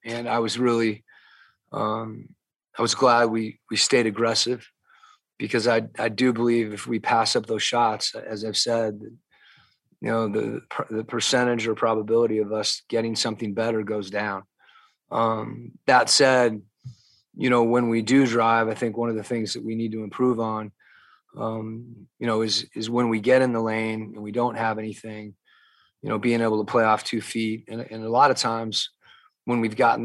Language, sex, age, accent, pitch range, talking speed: English, male, 30-49, American, 110-120 Hz, 190 wpm